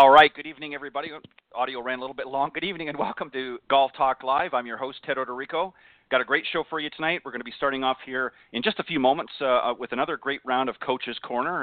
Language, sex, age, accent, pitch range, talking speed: English, male, 40-59, American, 115-140 Hz, 265 wpm